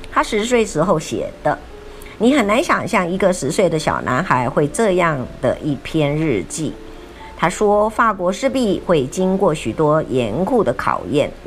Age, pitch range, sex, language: 50-69, 140-215 Hz, male, Chinese